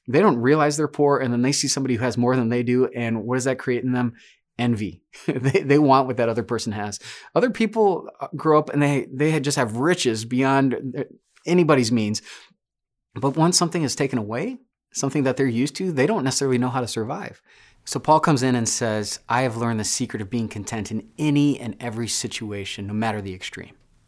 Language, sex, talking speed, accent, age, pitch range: English, male, 215 wpm, American, 30-49, 115-145 Hz